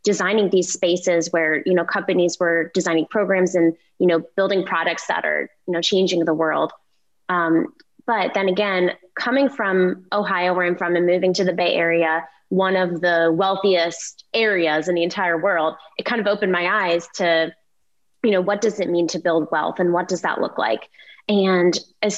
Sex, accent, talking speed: female, American, 190 wpm